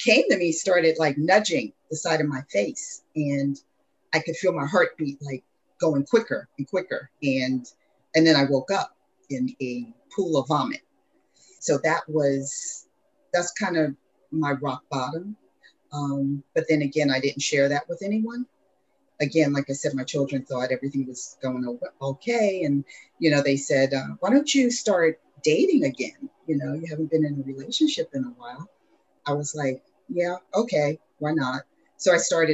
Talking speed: 175 wpm